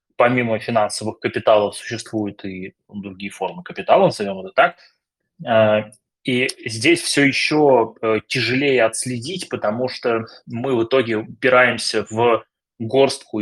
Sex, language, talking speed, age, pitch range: male, Russian, 110 wpm, 20-39, 105-125 Hz